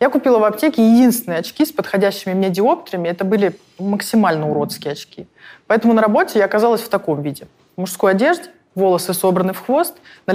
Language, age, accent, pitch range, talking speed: Russian, 20-39, native, 180-220 Hz, 175 wpm